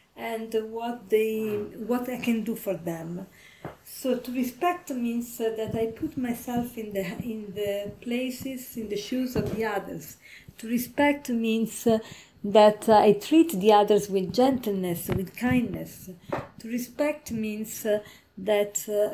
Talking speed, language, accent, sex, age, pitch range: 140 wpm, English, Italian, female, 40-59, 205-245 Hz